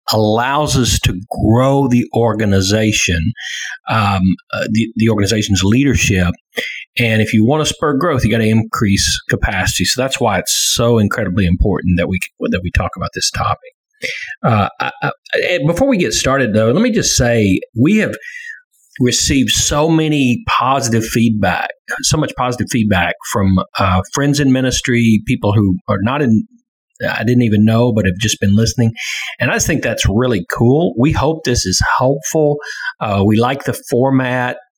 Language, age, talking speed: English, 40-59, 170 wpm